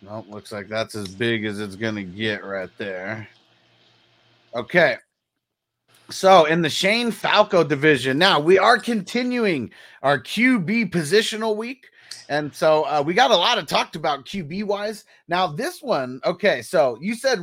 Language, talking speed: English, 160 wpm